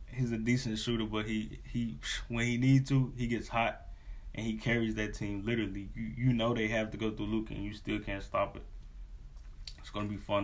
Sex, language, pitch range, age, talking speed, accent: male, English, 95-120 Hz, 20-39, 230 wpm, American